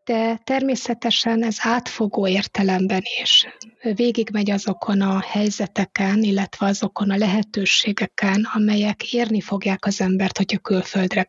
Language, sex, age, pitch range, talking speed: Hungarian, female, 20-39, 205-230 Hz, 110 wpm